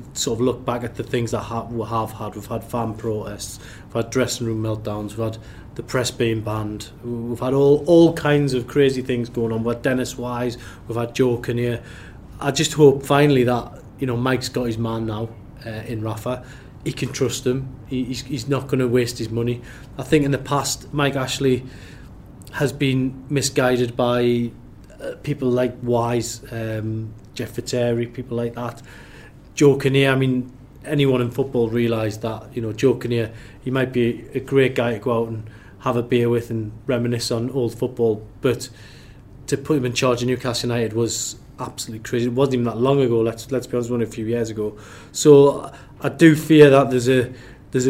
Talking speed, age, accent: 200 wpm, 30-49, British